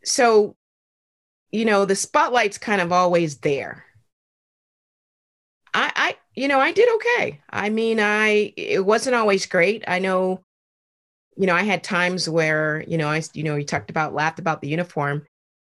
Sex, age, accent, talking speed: female, 30-49, American, 165 wpm